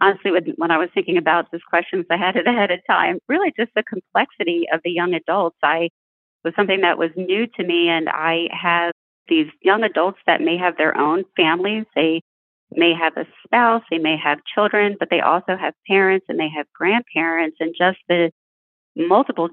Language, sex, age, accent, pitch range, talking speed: English, female, 40-59, American, 155-185 Hz, 200 wpm